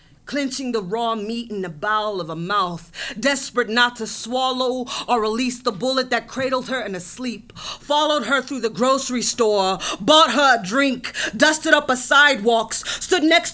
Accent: American